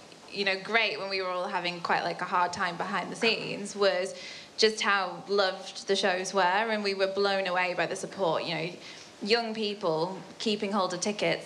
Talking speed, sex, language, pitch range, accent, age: 205 wpm, female, English, 175-200 Hz, British, 10-29